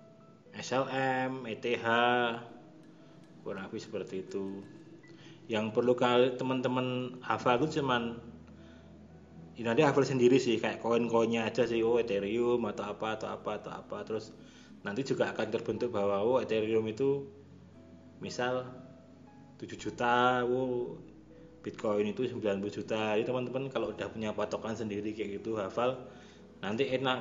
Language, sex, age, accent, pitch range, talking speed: Indonesian, male, 20-39, native, 105-125 Hz, 130 wpm